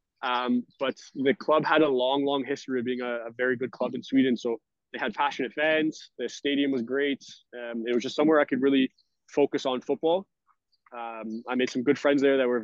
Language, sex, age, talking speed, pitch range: English, male, 20-39, 225 wpm, 125-145 Hz